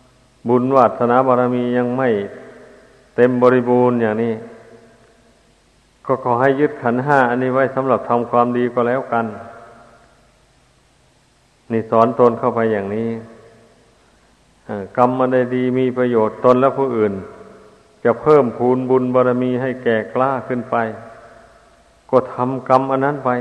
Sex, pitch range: male, 120-130 Hz